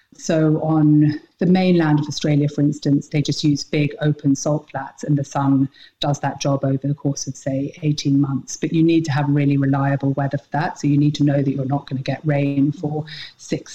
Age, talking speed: 30-49, 225 wpm